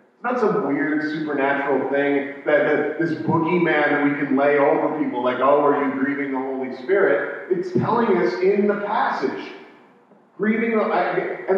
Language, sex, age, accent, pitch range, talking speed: English, male, 40-59, American, 145-220 Hz, 160 wpm